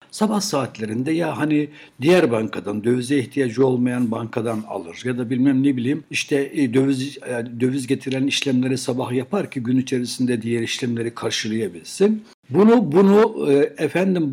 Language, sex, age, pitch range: Turkish, male, 60-79, 125-155 Hz